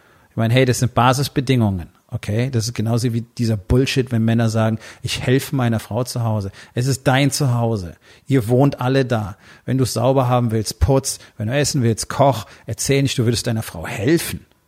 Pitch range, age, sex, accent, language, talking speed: 115-135 Hz, 40-59, male, German, German, 200 wpm